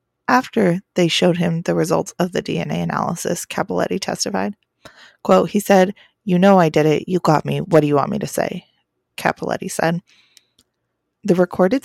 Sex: female